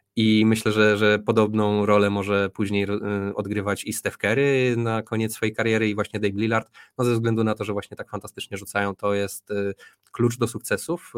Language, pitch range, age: Polish, 100-110 Hz, 20-39